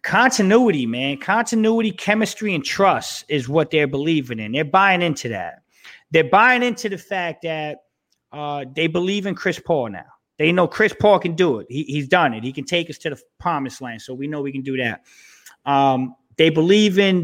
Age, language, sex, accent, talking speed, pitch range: 30-49, English, male, American, 200 wpm, 140-215 Hz